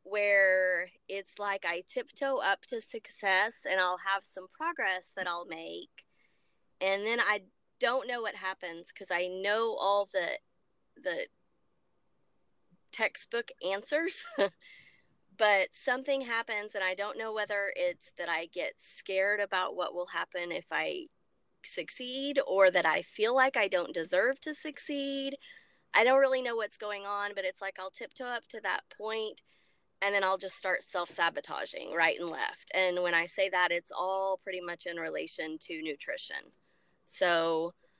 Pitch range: 175-210 Hz